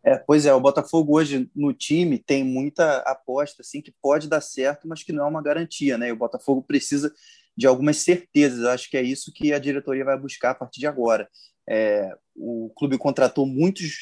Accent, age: Brazilian, 20-39